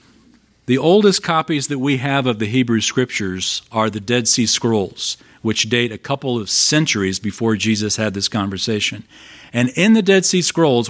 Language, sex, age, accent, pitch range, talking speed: English, male, 40-59, American, 110-135 Hz, 175 wpm